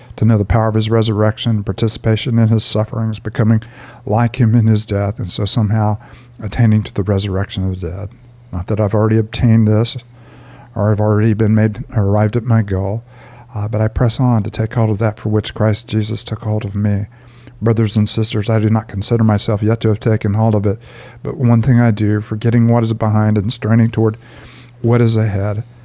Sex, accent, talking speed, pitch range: male, American, 210 wpm, 105-120 Hz